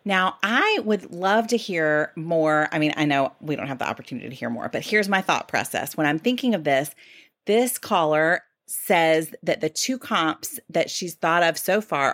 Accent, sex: American, female